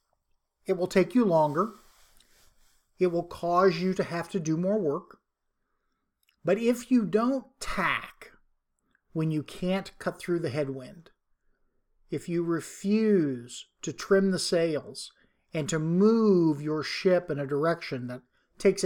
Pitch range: 150-195 Hz